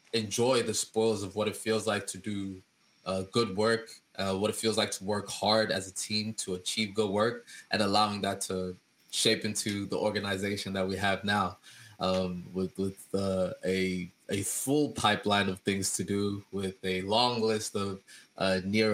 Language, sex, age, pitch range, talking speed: English, male, 20-39, 95-110 Hz, 185 wpm